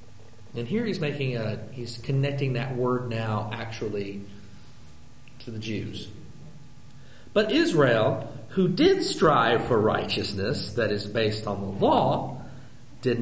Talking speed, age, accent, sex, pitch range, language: 125 wpm, 50-69, American, male, 115-160 Hz, English